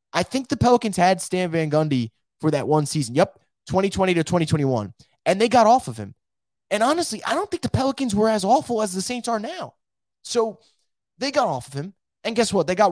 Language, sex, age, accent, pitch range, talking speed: English, male, 20-39, American, 140-210 Hz, 225 wpm